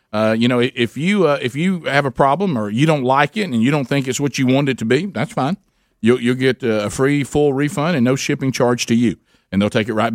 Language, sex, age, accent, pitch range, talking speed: English, male, 50-69, American, 110-140 Hz, 280 wpm